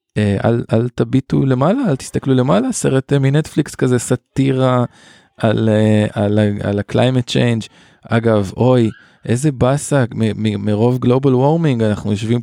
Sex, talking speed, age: male, 125 wpm, 20-39